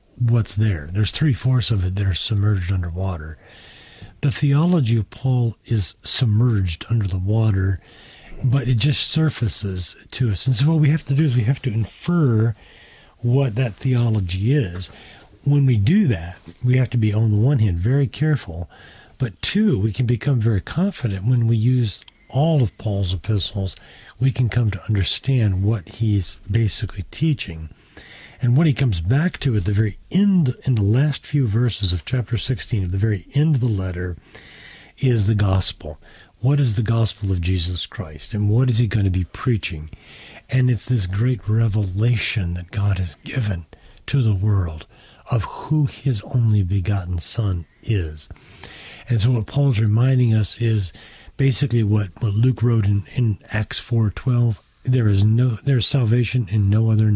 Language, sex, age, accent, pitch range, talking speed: English, male, 50-69, American, 100-125 Hz, 170 wpm